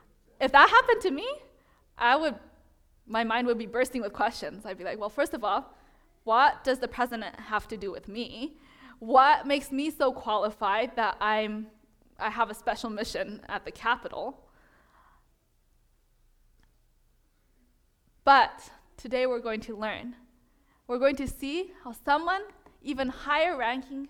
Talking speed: 150 wpm